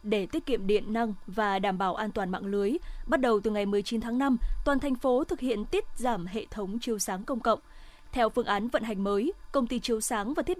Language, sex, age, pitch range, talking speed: Vietnamese, female, 20-39, 215-270 Hz, 250 wpm